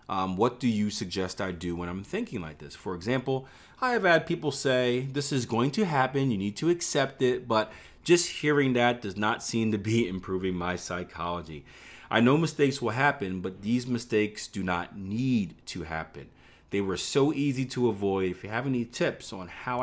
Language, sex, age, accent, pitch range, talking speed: English, male, 30-49, American, 90-135 Hz, 205 wpm